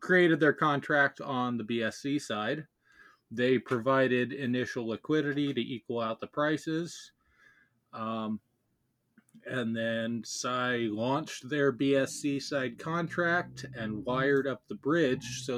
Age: 20-39